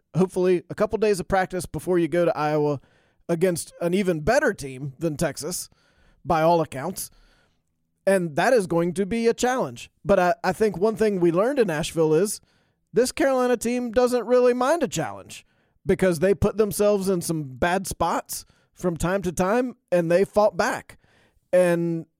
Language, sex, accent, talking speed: English, male, American, 175 wpm